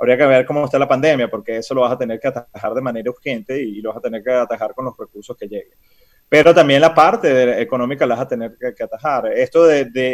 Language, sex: Spanish, male